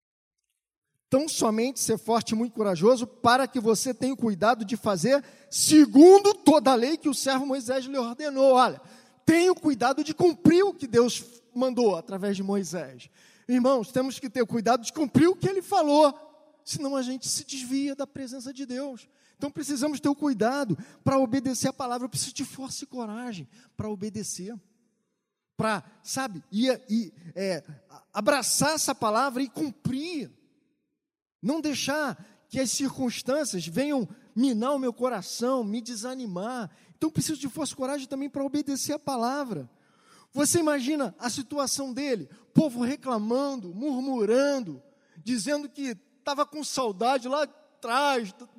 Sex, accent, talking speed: male, Brazilian, 155 wpm